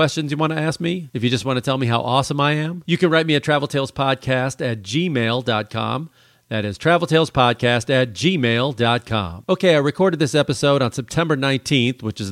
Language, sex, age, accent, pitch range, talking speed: English, male, 40-59, American, 120-160 Hz, 200 wpm